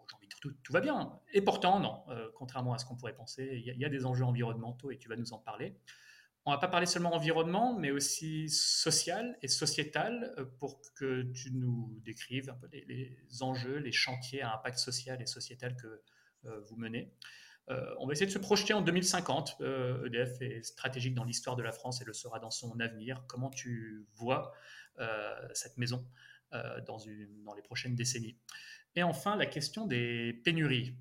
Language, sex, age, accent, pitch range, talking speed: French, male, 30-49, French, 115-145 Hz, 200 wpm